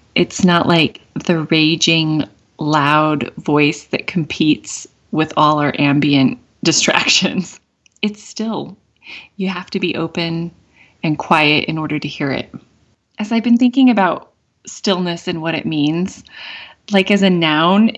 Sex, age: female, 30-49